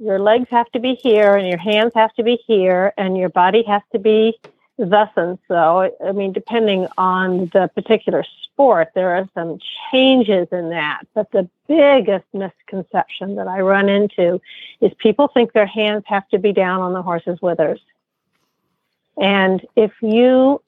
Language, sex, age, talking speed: English, female, 50-69, 170 wpm